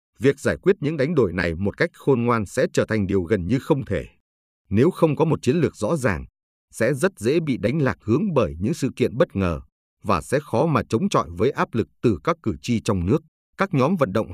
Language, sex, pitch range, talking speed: Vietnamese, male, 100-140 Hz, 245 wpm